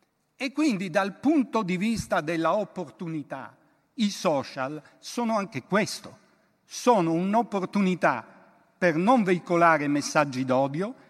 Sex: male